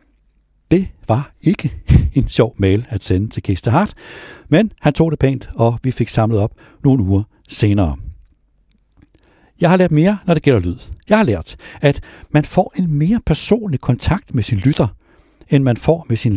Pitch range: 100-150 Hz